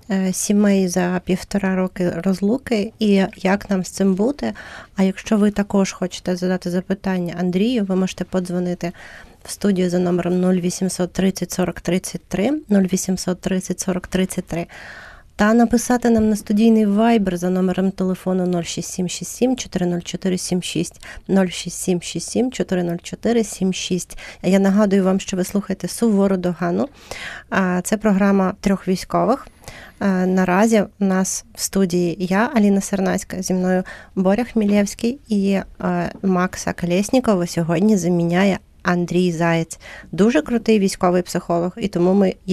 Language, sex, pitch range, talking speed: Ukrainian, female, 180-200 Hz, 115 wpm